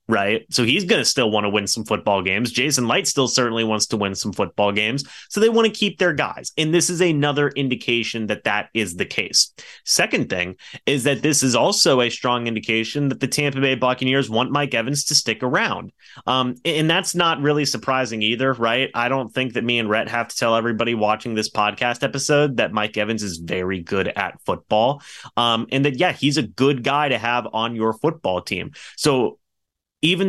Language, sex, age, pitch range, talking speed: English, male, 30-49, 115-150 Hz, 210 wpm